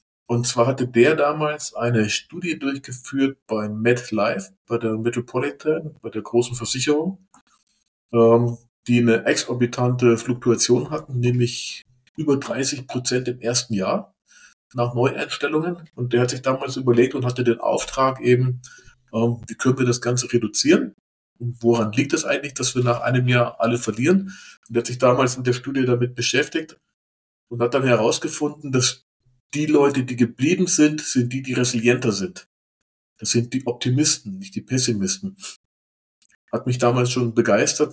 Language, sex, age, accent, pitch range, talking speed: German, male, 50-69, German, 120-135 Hz, 160 wpm